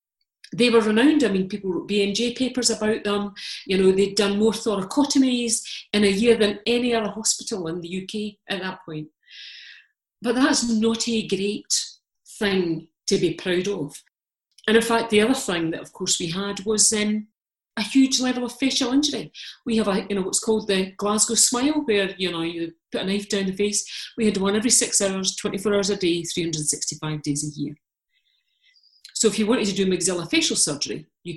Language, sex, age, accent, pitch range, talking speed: English, female, 50-69, British, 190-245 Hz, 195 wpm